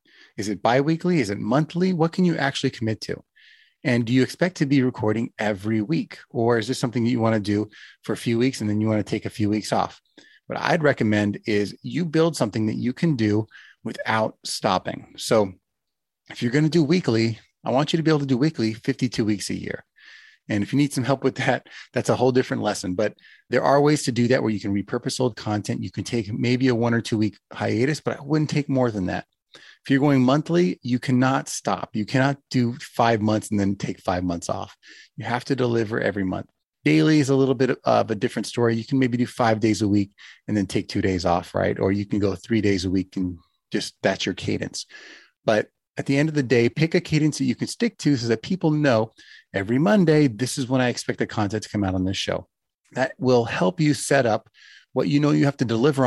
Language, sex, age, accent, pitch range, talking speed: English, male, 30-49, American, 105-140 Hz, 245 wpm